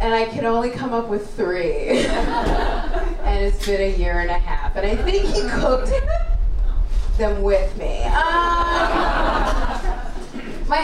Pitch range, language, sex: 215-320 Hz, English, female